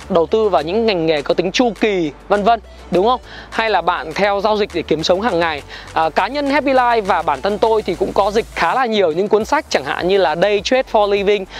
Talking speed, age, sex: 270 wpm, 20-39, male